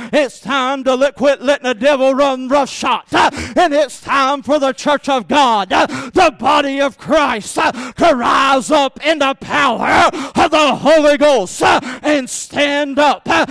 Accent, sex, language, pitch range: American, male, English, 245-295 Hz